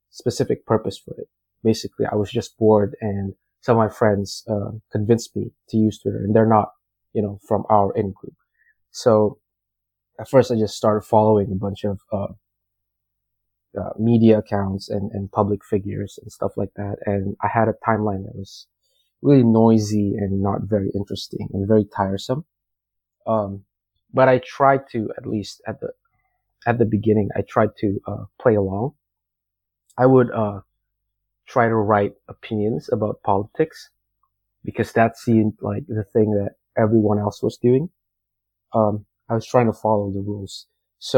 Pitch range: 100-115 Hz